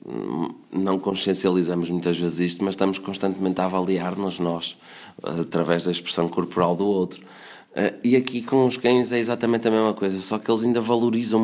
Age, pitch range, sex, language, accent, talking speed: 20-39, 95-115 Hz, male, Portuguese, Portuguese, 170 wpm